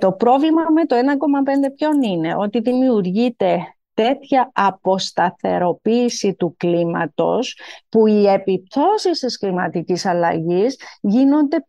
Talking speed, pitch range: 105 wpm, 190-260 Hz